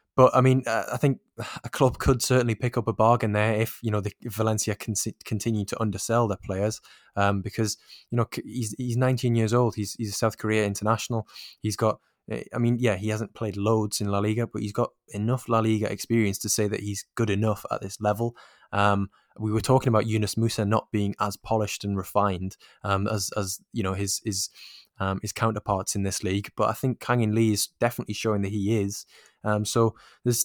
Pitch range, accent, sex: 105-120 Hz, British, male